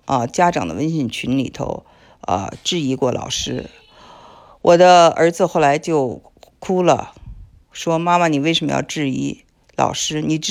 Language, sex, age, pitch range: Chinese, female, 50-69, 145-175 Hz